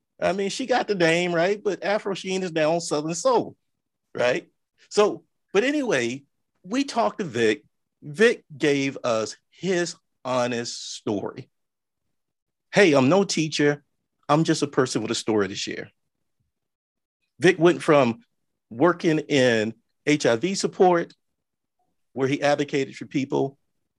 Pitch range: 125-170 Hz